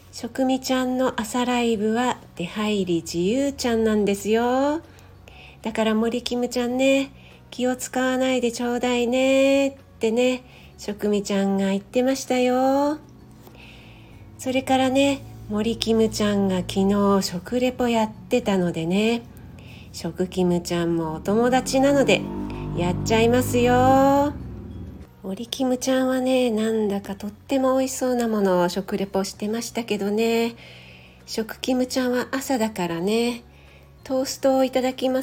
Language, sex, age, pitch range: Japanese, female, 40-59, 195-255 Hz